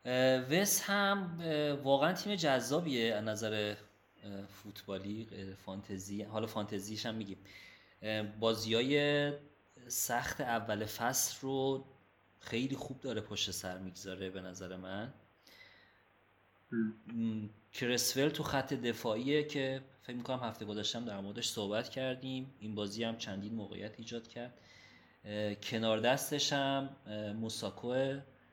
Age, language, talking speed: 30-49, Persian, 105 wpm